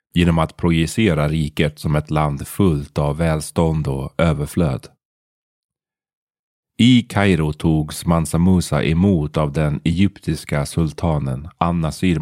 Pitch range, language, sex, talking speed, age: 80-90 Hz, Swedish, male, 115 wpm, 30-49